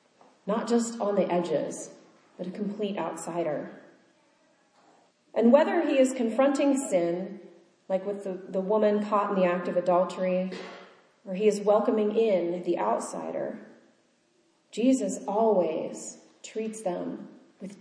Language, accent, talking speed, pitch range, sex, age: English, American, 130 wpm, 205-270 Hz, female, 30-49